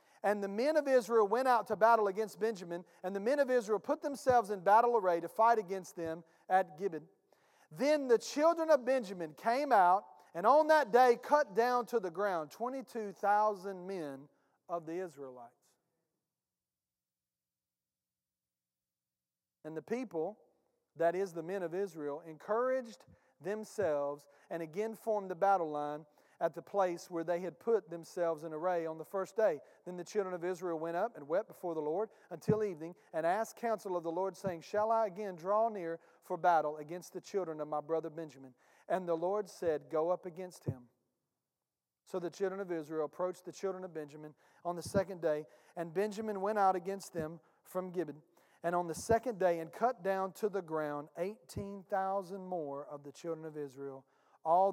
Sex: male